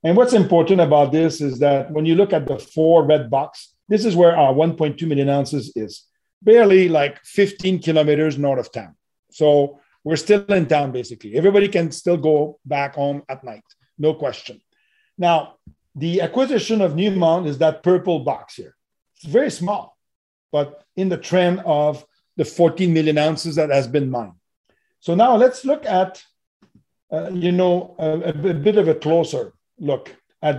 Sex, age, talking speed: male, 50-69, 175 wpm